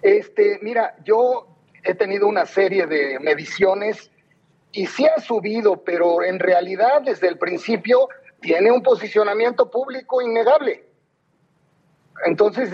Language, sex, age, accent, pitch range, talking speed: Spanish, male, 40-59, Mexican, 170-230 Hz, 120 wpm